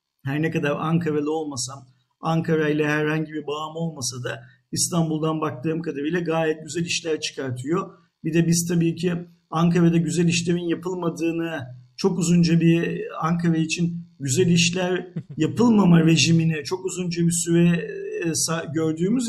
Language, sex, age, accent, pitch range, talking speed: Turkish, male, 50-69, native, 160-190 Hz, 135 wpm